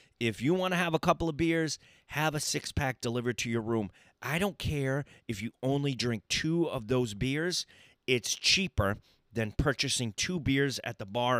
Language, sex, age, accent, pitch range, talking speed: English, male, 30-49, American, 115-145 Hz, 190 wpm